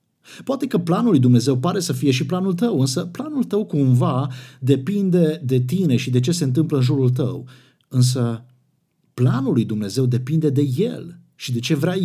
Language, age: Romanian, 50-69